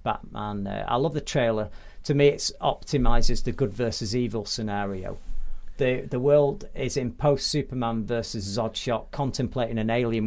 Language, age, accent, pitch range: English, 40-59, British, 110-140 Hz